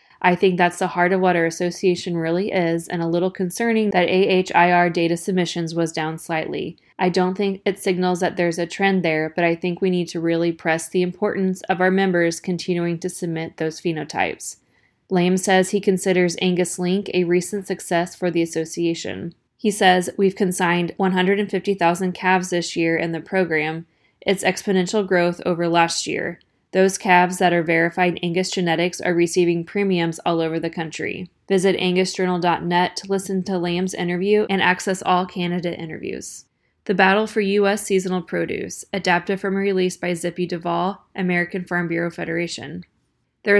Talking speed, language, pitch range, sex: 170 wpm, English, 170-190 Hz, female